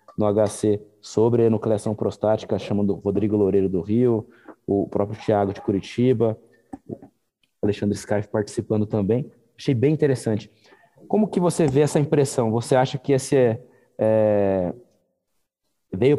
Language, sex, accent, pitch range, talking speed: Portuguese, male, Brazilian, 105-135 Hz, 130 wpm